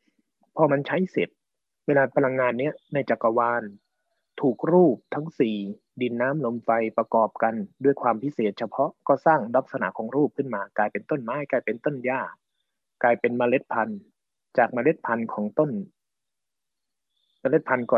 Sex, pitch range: male, 115-155 Hz